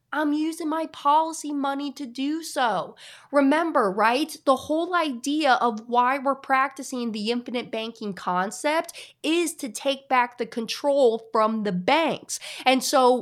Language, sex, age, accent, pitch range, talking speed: English, female, 20-39, American, 235-295 Hz, 145 wpm